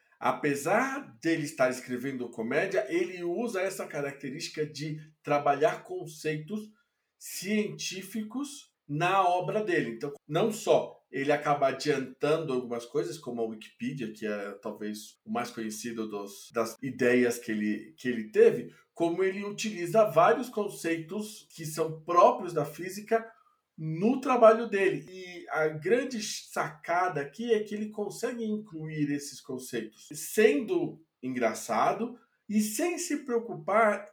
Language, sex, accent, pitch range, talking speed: Portuguese, male, Brazilian, 145-220 Hz, 125 wpm